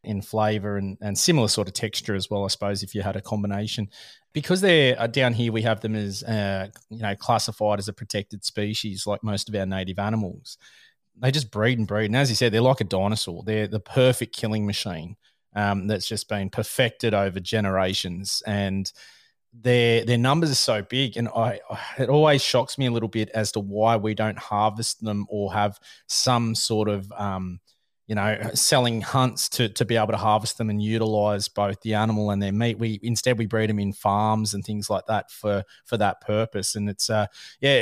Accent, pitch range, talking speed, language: Australian, 105-120 Hz, 210 wpm, English